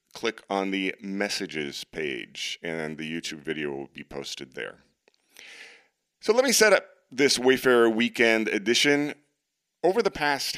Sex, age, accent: male, 40-59, American